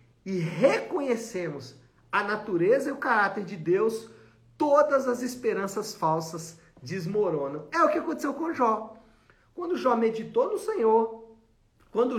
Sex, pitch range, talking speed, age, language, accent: male, 185-260 Hz, 130 wpm, 40-59, Portuguese, Brazilian